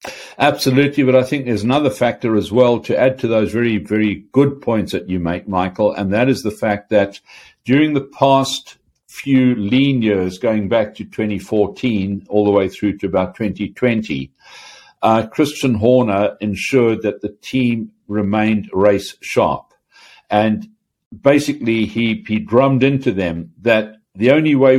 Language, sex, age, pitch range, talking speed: English, male, 60-79, 105-125 Hz, 155 wpm